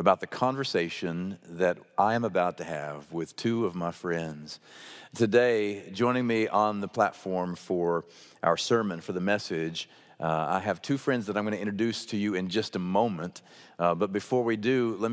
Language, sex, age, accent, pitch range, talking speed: English, male, 50-69, American, 90-120 Hz, 190 wpm